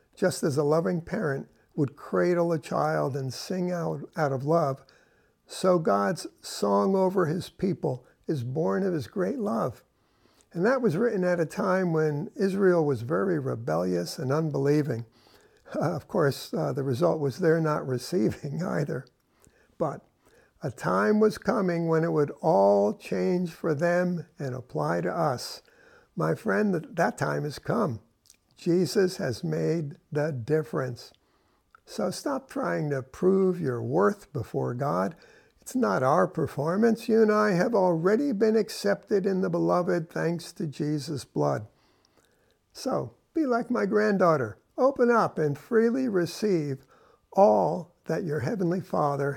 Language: English